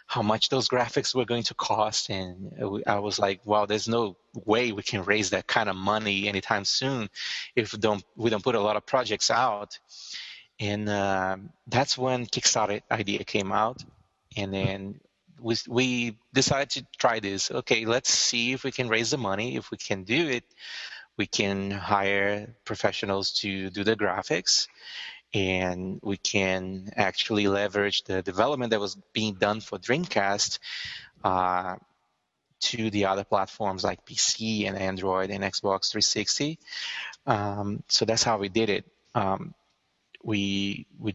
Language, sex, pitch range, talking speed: English, male, 100-115 Hz, 160 wpm